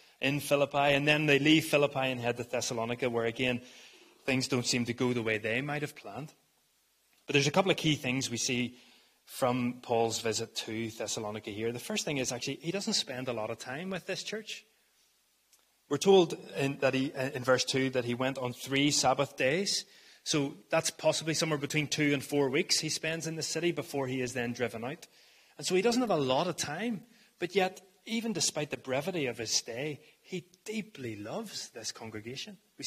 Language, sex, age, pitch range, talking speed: English, male, 30-49, 125-165 Hz, 205 wpm